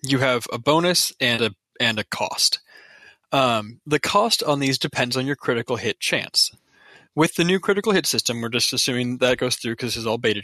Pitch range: 120-155 Hz